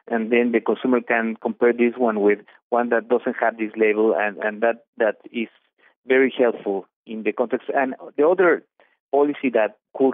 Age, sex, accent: 50-69, male, Mexican